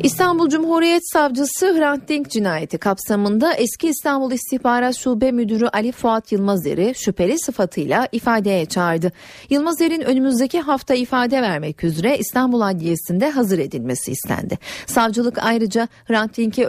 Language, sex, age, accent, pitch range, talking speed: Turkish, female, 40-59, native, 185-255 Hz, 120 wpm